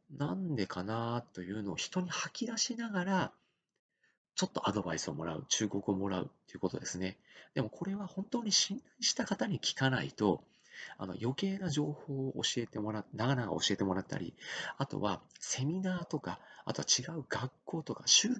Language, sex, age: Japanese, male, 40-59